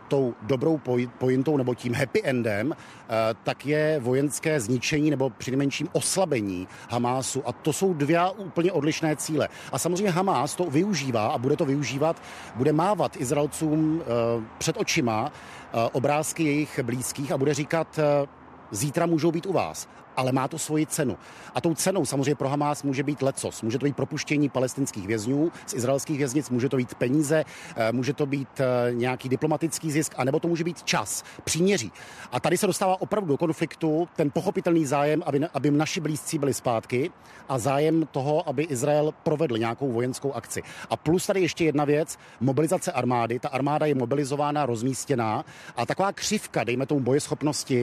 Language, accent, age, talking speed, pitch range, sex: Czech, native, 50-69, 170 wpm, 130-160 Hz, male